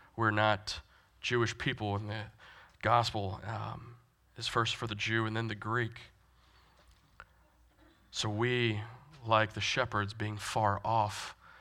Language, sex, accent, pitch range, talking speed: English, male, American, 105-120 Hz, 130 wpm